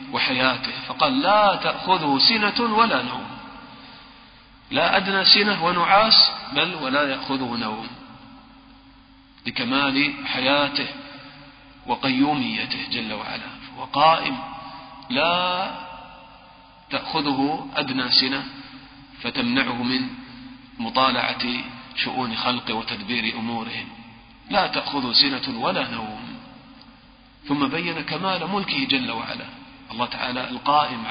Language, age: English, 40-59